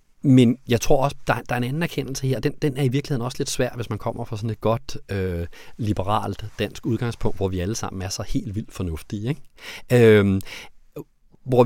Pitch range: 105-140 Hz